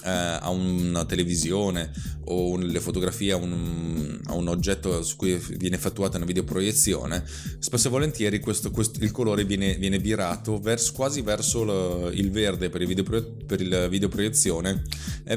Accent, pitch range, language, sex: native, 85-105 Hz, Italian, male